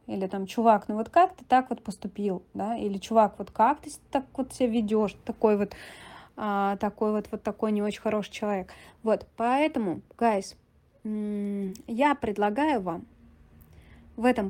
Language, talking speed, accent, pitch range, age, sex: Russian, 150 wpm, native, 200-235 Hz, 20-39, female